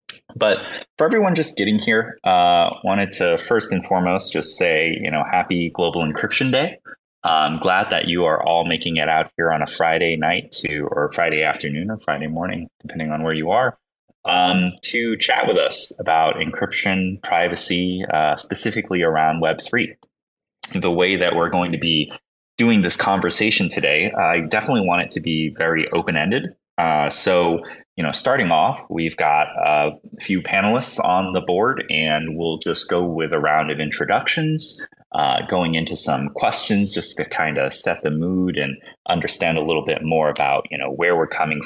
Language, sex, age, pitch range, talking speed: English, male, 20-39, 80-110 Hz, 180 wpm